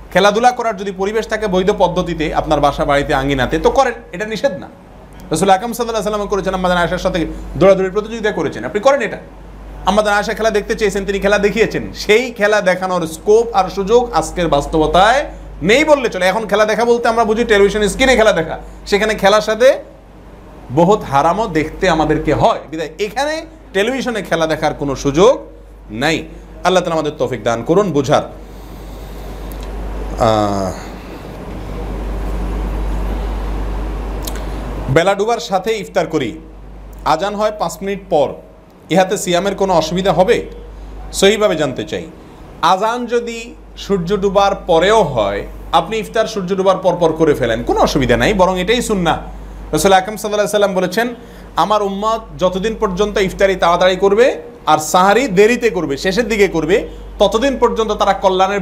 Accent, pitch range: native, 160-215 Hz